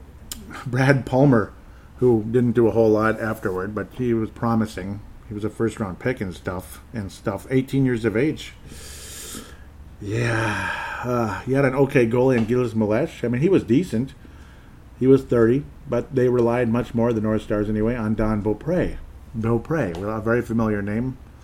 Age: 50-69